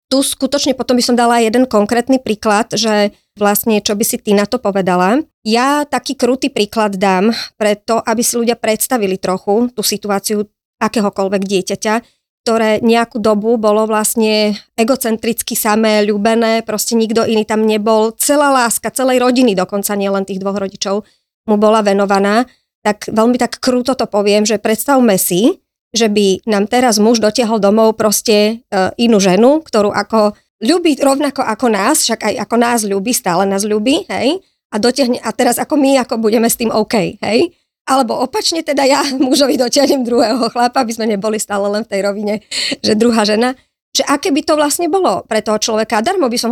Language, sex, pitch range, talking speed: Slovak, male, 210-250 Hz, 180 wpm